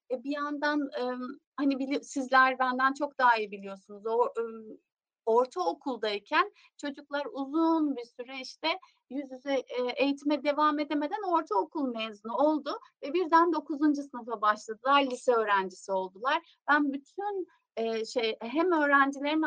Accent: native